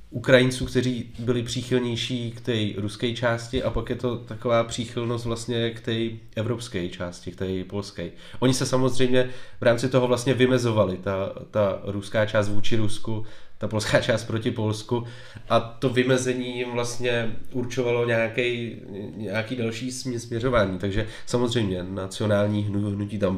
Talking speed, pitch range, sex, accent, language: 145 wpm, 105-120 Hz, male, native, Czech